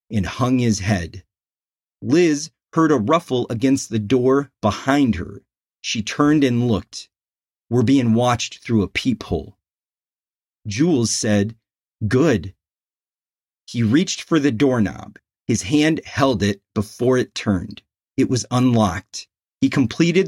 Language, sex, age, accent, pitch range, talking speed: English, male, 40-59, American, 110-145 Hz, 125 wpm